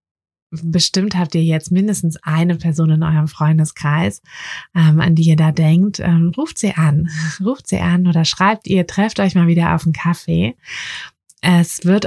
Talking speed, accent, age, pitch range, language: 165 wpm, German, 20-39, 165-185 Hz, German